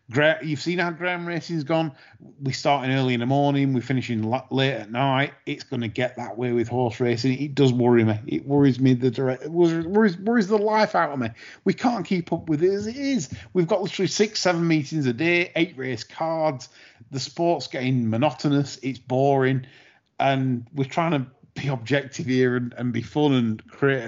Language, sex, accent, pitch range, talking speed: English, male, British, 120-155 Hz, 200 wpm